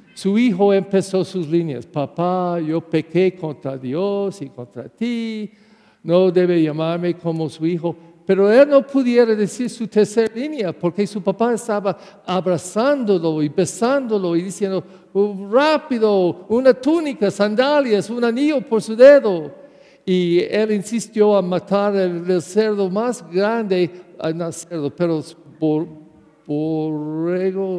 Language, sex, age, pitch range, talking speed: English, male, 50-69, 160-210 Hz, 130 wpm